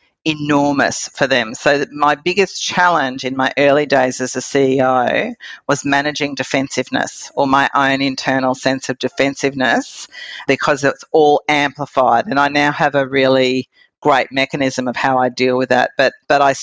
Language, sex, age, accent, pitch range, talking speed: English, female, 50-69, Australian, 130-165 Hz, 160 wpm